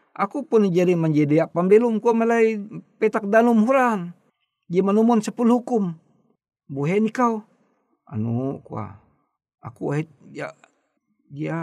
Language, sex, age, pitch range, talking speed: Indonesian, male, 50-69, 155-215 Hz, 120 wpm